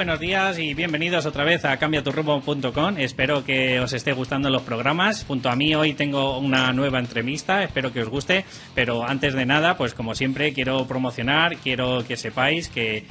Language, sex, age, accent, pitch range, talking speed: Spanish, male, 20-39, Spanish, 120-145 Hz, 185 wpm